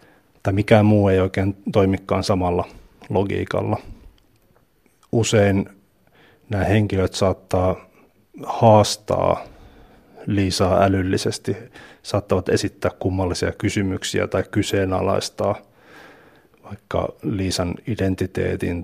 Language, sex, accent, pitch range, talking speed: Finnish, male, native, 95-105 Hz, 75 wpm